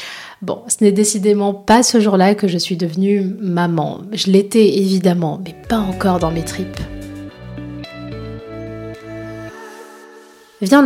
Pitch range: 175-210 Hz